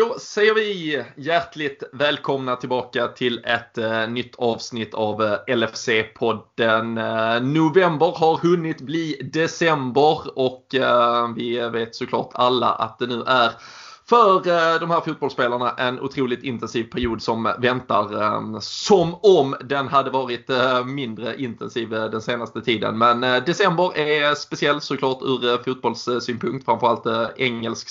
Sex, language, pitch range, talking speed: male, Swedish, 120-150 Hz, 115 wpm